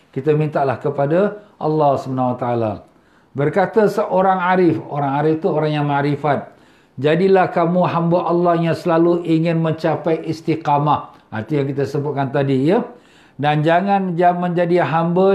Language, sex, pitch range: Malay, male, 155-185 Hz